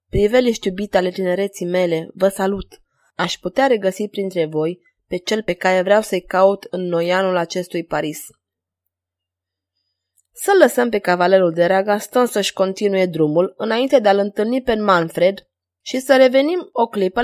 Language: Romanian